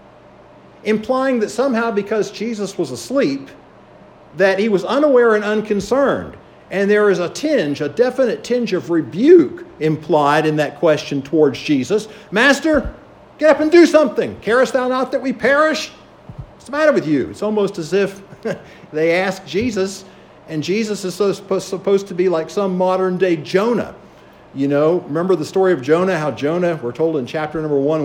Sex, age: male, 50-69